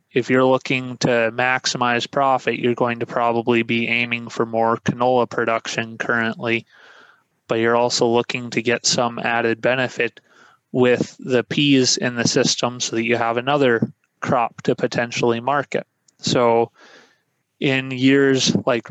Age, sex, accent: 20-39, male, American